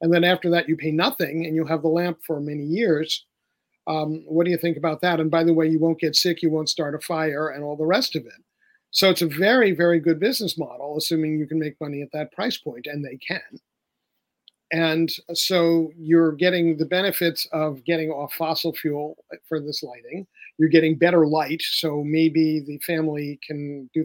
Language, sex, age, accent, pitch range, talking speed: English, male, 50-69, American, 155-170 Hz, 210 wpm